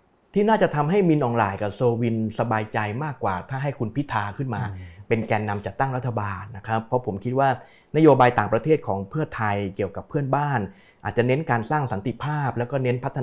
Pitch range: 105-135 Hz